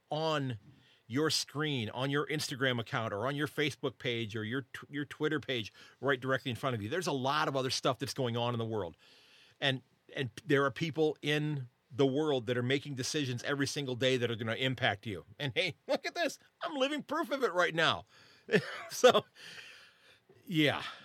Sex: male